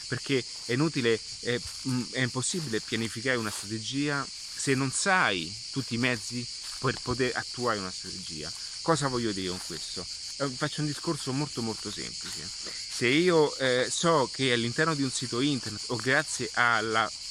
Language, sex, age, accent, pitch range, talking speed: Italian, male, 30-49, native, 110-140 Hz, 155 wpm